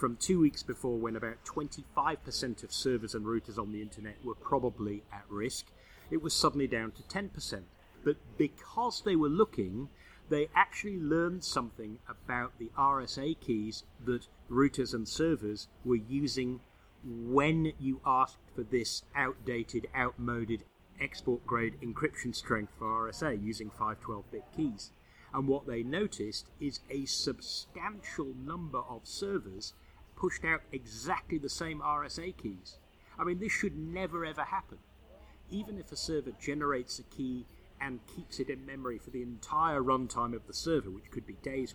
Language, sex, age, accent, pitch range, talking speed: English, male, 40-59, British, 110-145 Hz, 150 wpm